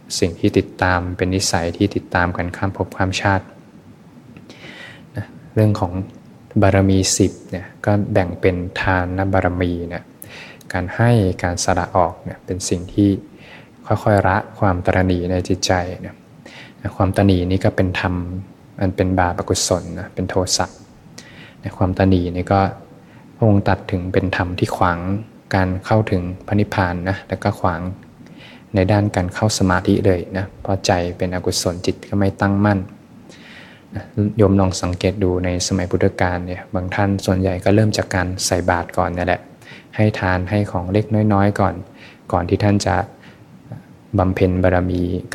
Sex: male